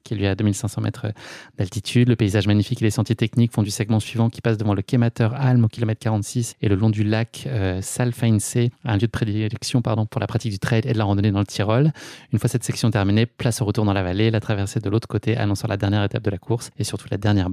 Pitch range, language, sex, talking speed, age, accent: 105-120 Hz, French, male, 265 wpm, 20-39, French